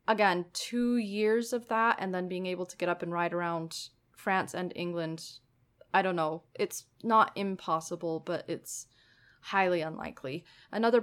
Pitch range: 170-200 Hz